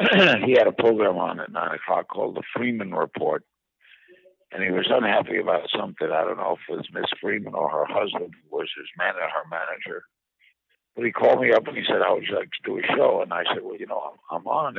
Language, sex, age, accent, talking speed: English, male, 60-79, American, 235 wpm